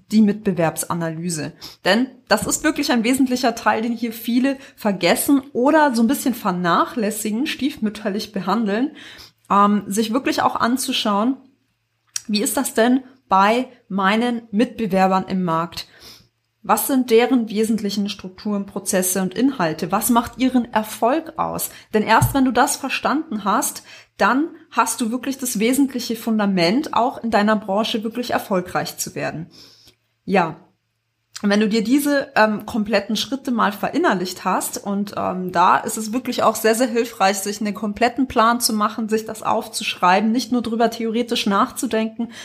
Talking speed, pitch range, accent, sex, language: 145 wpm, 195-245 Hz, German, female, German